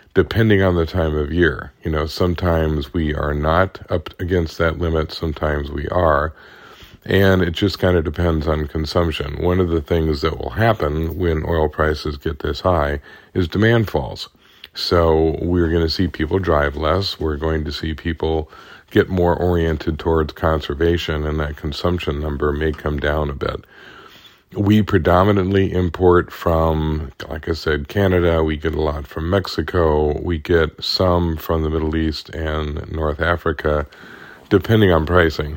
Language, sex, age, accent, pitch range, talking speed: English, male, 50-69, American, 75-85 Hz, 165 wpm